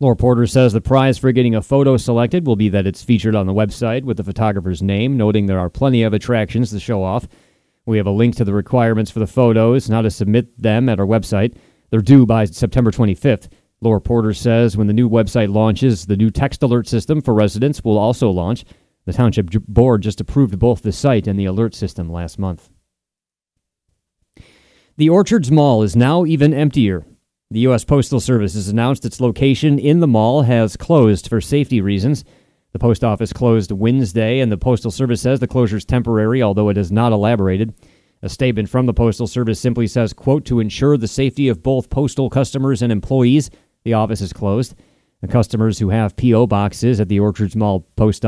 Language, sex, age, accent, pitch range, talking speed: English, male, 30-49, American, 105-125 Hz, 200 wpm